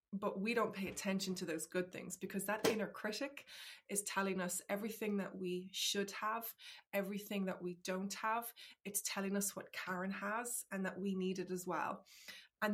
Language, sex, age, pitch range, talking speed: English, female, 20-39, 190-235 Hz, 190 wpm